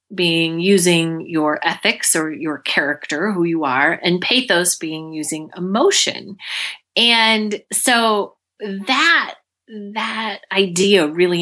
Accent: American